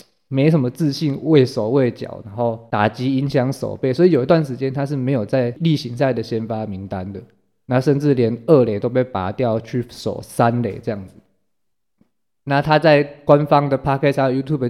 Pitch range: 115-140 Hz